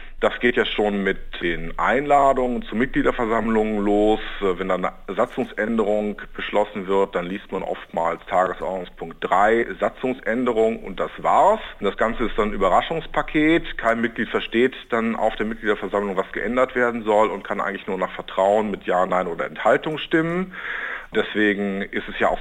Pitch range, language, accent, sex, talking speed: 105-130 Hz, German, German, male, 160 wpm